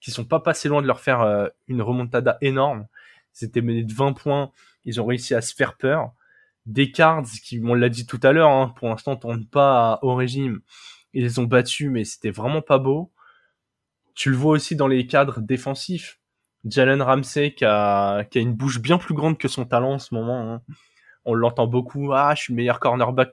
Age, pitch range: 20-39, 115-145 Hz